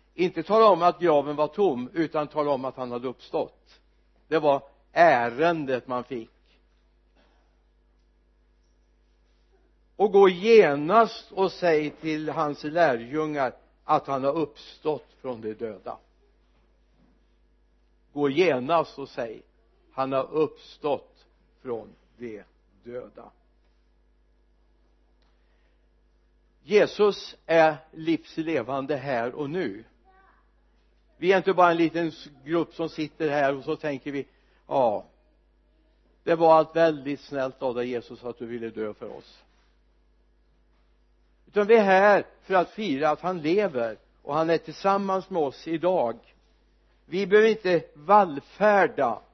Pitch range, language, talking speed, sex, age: 125-175 Hz, Swedish, 120 wpm, male, 60-79